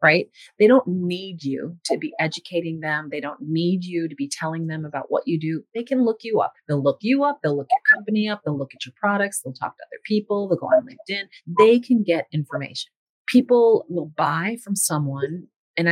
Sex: female